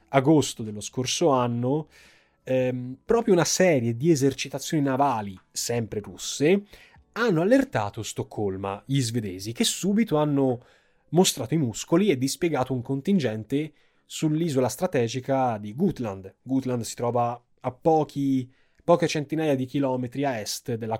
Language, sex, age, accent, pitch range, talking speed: Italian, male, 20-39, native, 115-160 Hz, 125 wpm